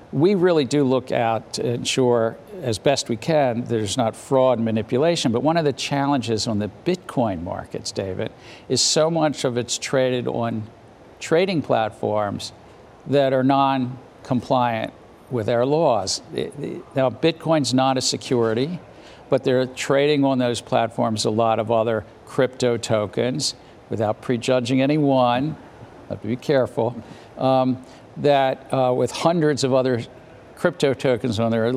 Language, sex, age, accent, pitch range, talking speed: English, male, 60-79, American, 115-140 Hz, 145 wpm